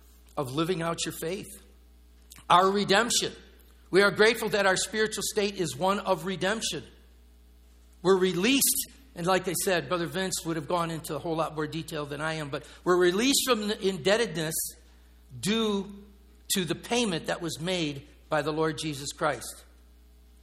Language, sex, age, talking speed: English, male, 60-79, 165 wpm